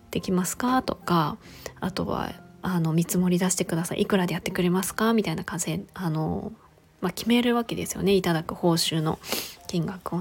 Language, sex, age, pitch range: Japanese, female, 20-39, 180-220 Hz